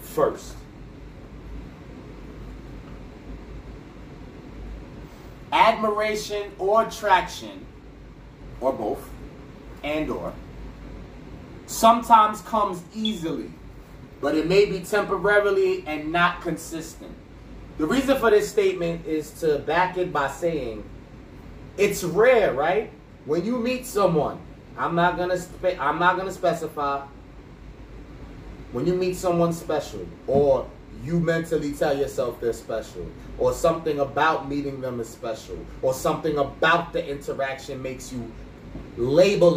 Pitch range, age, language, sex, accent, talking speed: 145-200 Hz, 30-49, English, male, American, 110 wpm